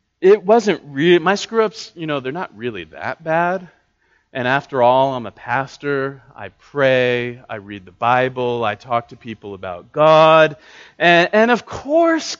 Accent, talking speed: American, 170 wpm